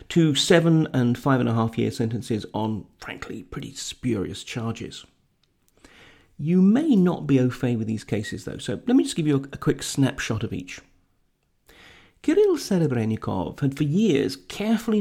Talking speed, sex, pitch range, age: 165 wpm, male, 115-160 Hz, 40-59